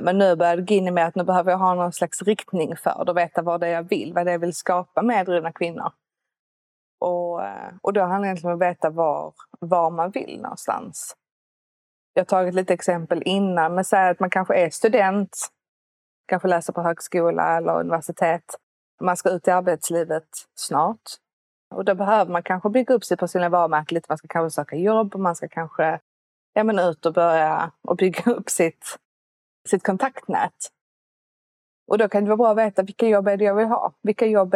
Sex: female